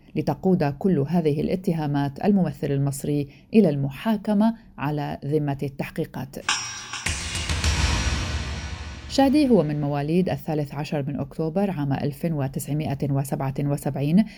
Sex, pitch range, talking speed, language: female, 145-185 Hz, 90 wpm, Arabic